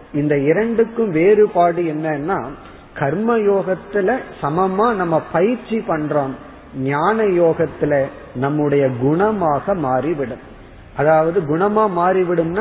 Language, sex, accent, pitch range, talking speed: Tamil, male, native, 140-185 Hz, 85 wpm